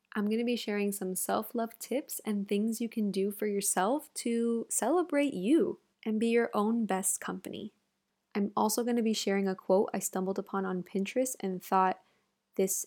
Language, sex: English, female